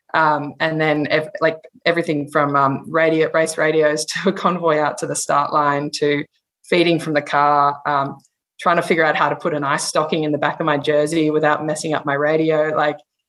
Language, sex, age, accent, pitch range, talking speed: English, female, 20-39, Australian, 145-160 Hz, 210 wpm